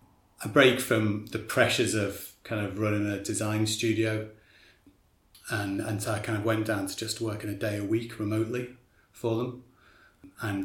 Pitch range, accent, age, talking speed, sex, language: 100-115 Hz, British, 30-49, 175 wpm, male, English